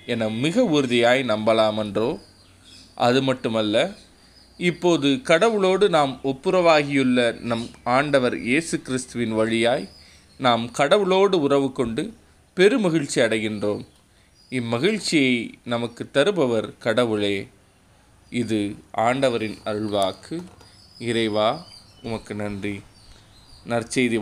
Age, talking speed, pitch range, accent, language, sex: 20-39, 80 wpm, 110-145 Hz, native, Tamil, male